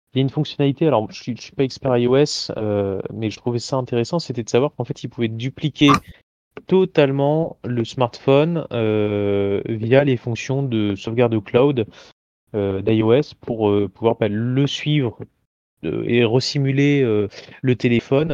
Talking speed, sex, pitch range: 175 wpm, male, 100-130 Hz